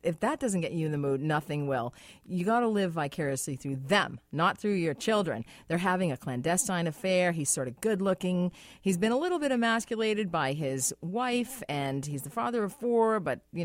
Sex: female